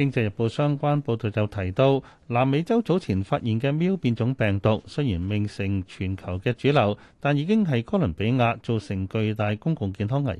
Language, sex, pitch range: Chinese, male, 110-145 Hz